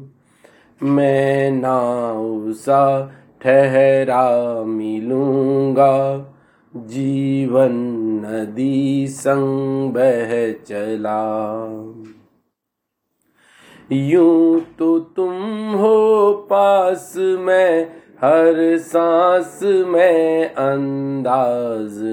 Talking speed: 50 wpm